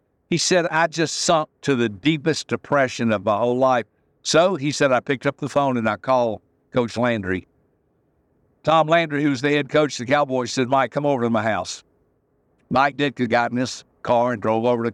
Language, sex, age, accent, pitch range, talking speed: English, male, 60-79, American, 120-155 Hz, 210 wpm